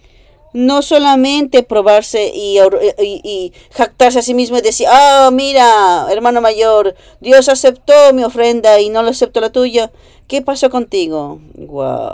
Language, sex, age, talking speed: English, female, 40-59, 155 wpm